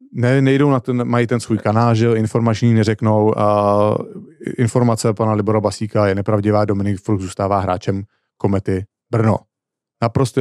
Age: 40-59